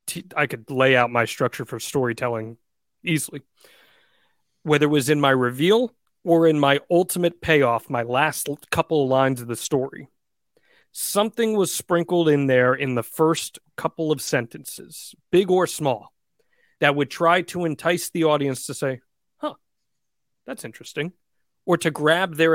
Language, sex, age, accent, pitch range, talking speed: English, male, 40-59, American, 125-165 Hz, 155 wpm